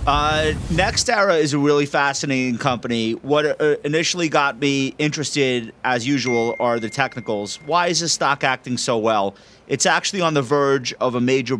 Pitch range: 115-145 Hz